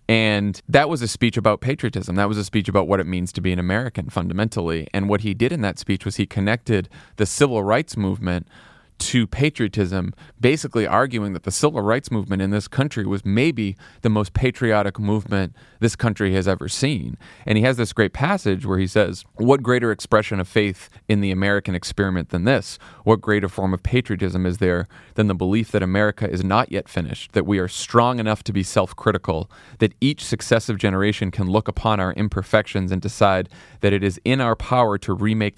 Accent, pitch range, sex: American, 95-115 Hz, male